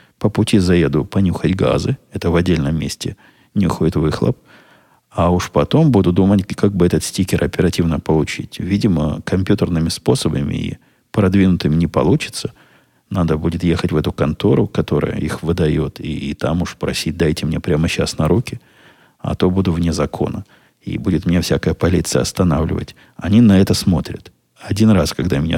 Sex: male